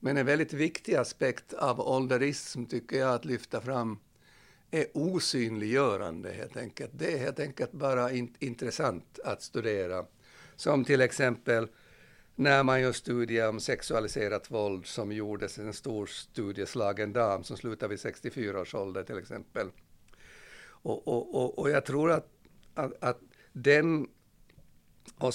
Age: 60-79